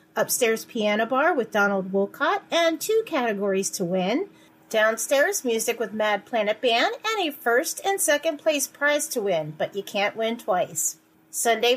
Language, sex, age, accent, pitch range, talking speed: English, female, 40-59, American, 210-305 Hz, 165 wpm